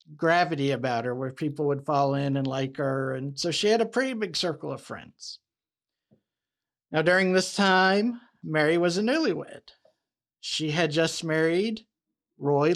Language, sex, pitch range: English, male, 145-185 Hz